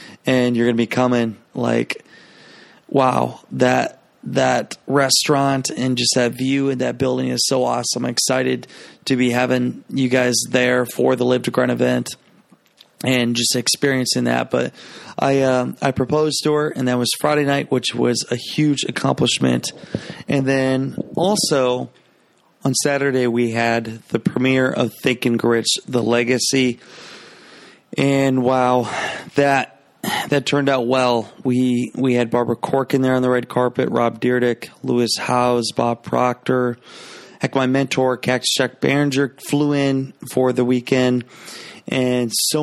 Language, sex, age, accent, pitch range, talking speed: English, male, 30-49, American, 120-135 Hz, 150 wpm